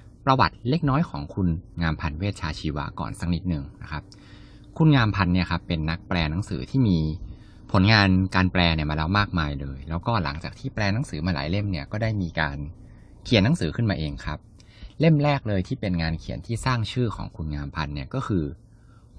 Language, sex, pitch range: Thai, male, 85-115 Hz